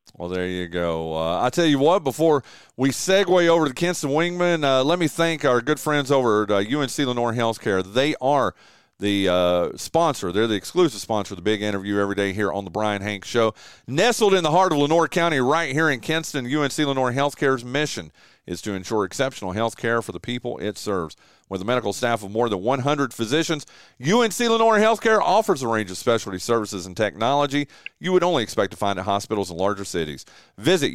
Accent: American